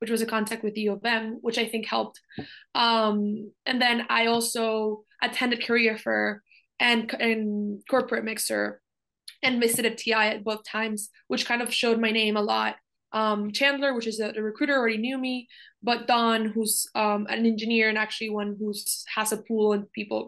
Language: English